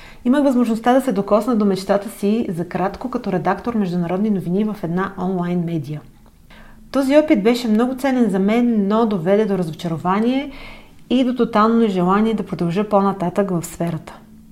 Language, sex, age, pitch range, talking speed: Bulgarian, female, 30-49, 185-230 Hz, 155 wpm